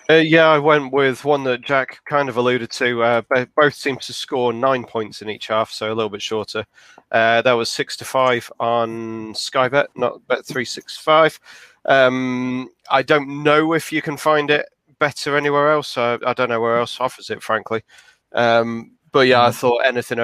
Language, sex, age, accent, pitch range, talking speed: English, male, 30-49, British, 115-135 Hz, 185 wpm